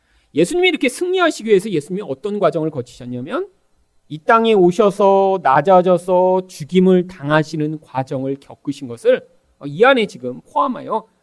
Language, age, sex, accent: Korean, 40-59, male, native